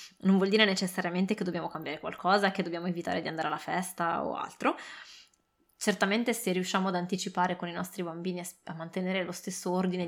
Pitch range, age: 175-200 Hz, 20-39